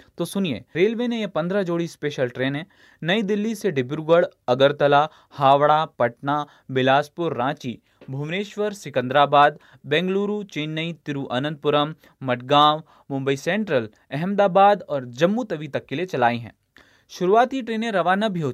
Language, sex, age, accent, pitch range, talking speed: Hindi, male, 20-39, native, 140-205 Hz, 130 wpm